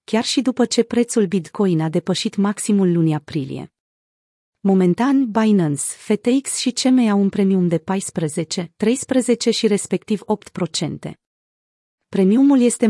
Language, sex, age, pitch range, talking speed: Romanian, female, 30-49, 175-225 Hz, 125 wpm